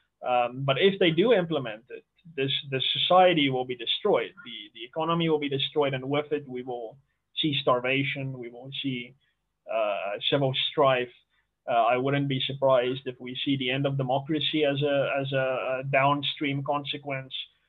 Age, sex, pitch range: 20-39, male, 130-150 Hz